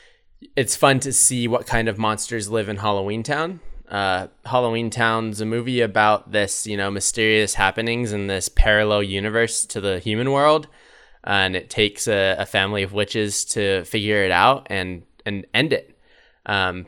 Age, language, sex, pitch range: 10-29, English, male, 100-130 Hz